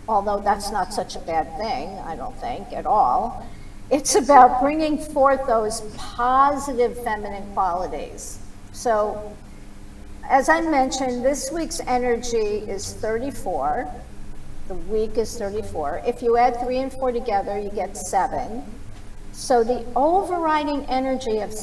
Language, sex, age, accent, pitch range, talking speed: English, female, 50-69, American, 200-260 Hz, 135 wpm